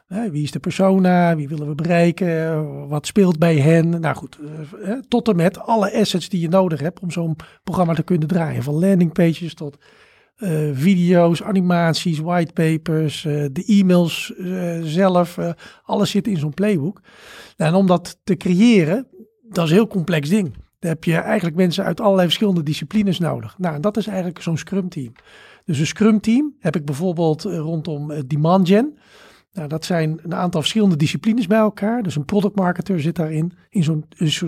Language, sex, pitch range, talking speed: Dutch, male, 165-200 Hz, 180 wpm